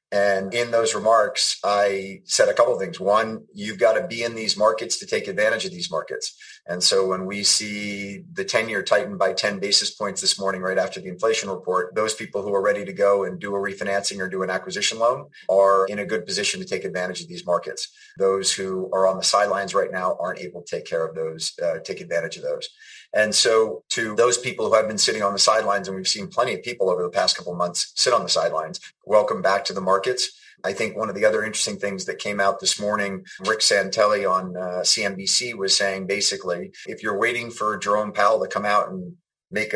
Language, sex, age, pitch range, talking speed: English, male, 30-49, 95-125 Hz, 235 wpm